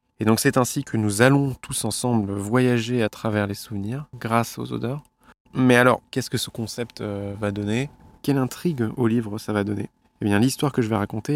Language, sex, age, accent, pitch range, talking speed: French, male, 20-39, French, 105-125 Hz, 210 wpm